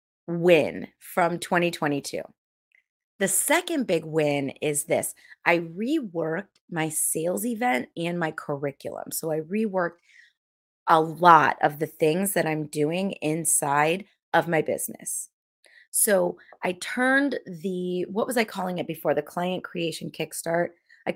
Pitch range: 155-195 Hz